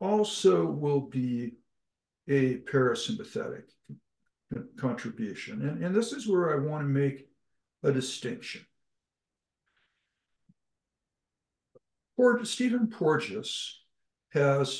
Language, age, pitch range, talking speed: English, 60-79, 130-170 Hz, 80 wpm